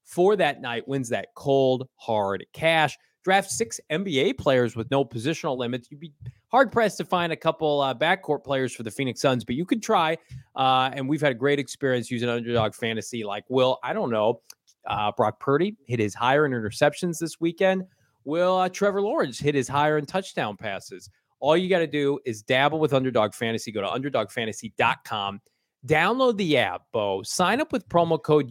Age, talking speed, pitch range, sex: 30-49, 195 wpm, 120-180 Hz, male